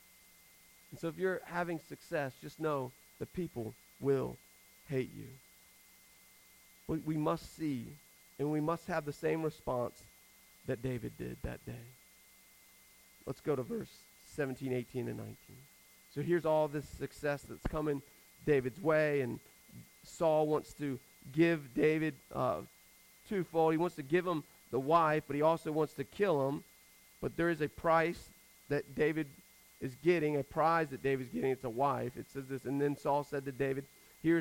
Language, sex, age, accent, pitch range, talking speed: English, male, 40-59, American, 135-165 Hz, 165 wpm